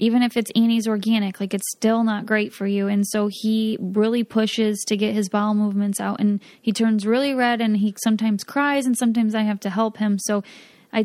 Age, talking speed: 20-39, 225 wpm